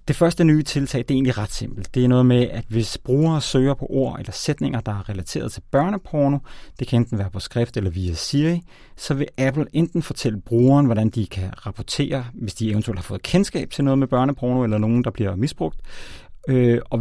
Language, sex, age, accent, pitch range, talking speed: Danish, male, 30-49, native, 110-145 Hz, 215 wpm